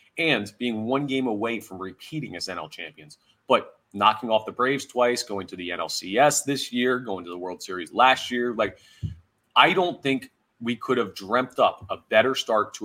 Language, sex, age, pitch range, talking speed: English, male, 30-49, 100-125 Hz, 195 wpm